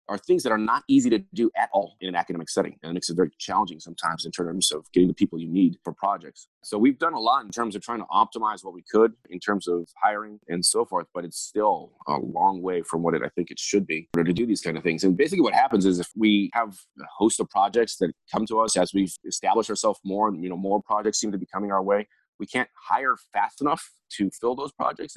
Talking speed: 260 wpm